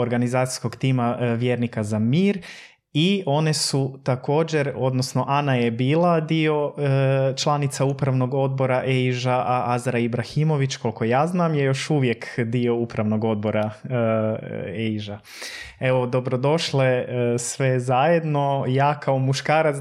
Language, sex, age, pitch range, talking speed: Croatian, male, 20-39, 125-145 Hz, 125 wpm